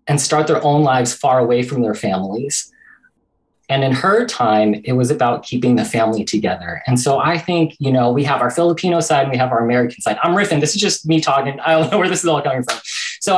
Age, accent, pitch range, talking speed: 20-39, American, 125-160 Hz, 245 wpm